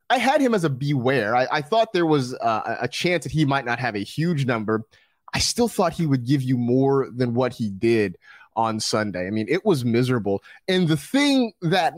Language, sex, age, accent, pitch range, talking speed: English, male, 30-49, American, 120-165 Hz, 225 wpm